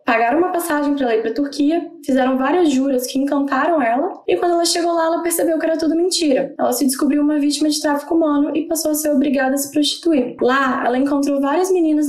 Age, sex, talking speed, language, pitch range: 10-29, female, 235 wpm, Portuguese, 260-315 Hz